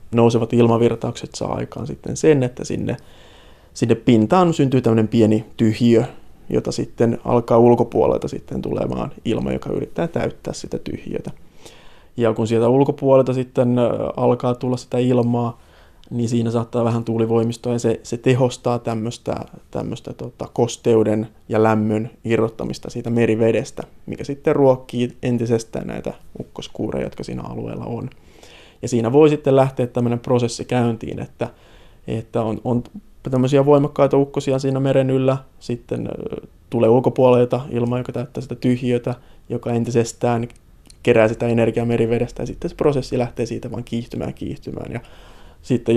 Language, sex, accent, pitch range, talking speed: Finnish, male, native, 115-125 Hz, 135 wpm